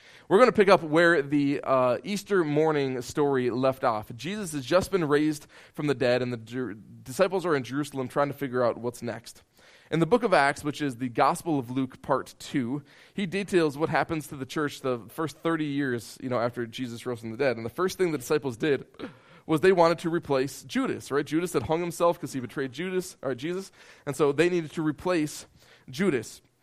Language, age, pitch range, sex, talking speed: English, 20-39, 130-175 Hz, male, 220 wpm